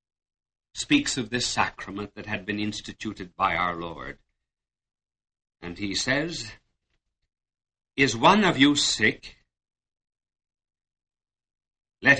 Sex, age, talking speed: male, 60-79, 100 wpm